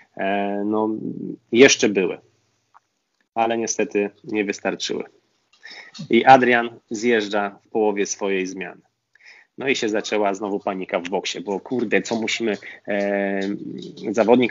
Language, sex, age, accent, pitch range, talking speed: Polish, male, 20-39, native, 100-115 Hz, 110 wpm